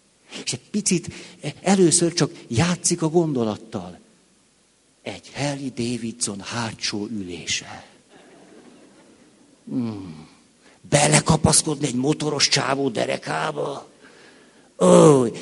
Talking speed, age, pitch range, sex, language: 80 wpm, 60-79, 120-180 Hz, male, Hungarian